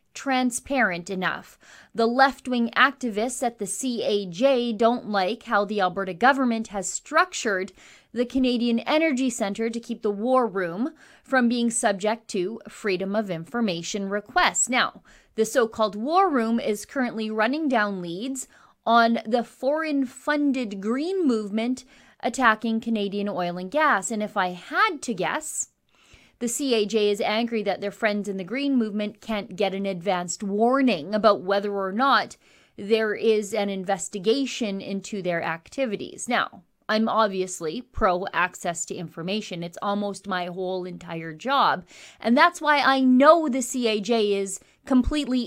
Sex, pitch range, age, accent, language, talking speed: female, 200-265 Hz, 30-49, American, English, 145 wpm